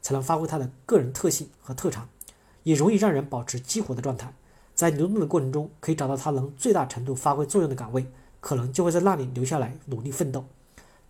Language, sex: Chinese, male